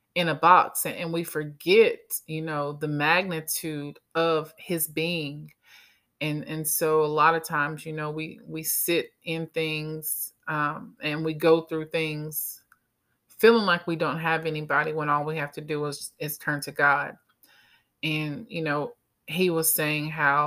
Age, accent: 30-49, American